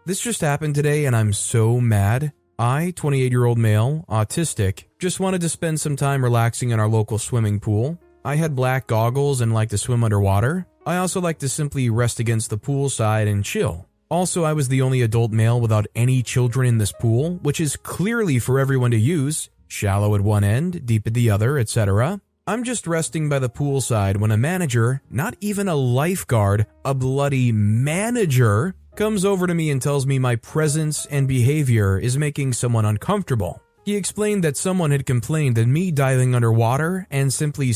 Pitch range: 115-155 Hz